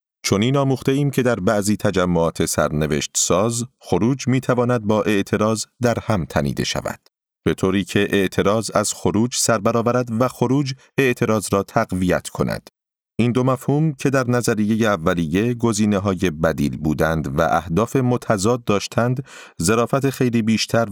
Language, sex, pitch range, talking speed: Persian, male, 95-125 Hz, 140 wpm